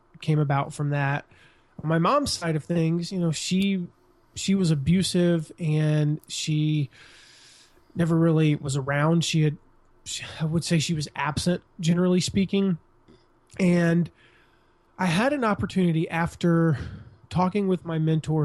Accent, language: American, English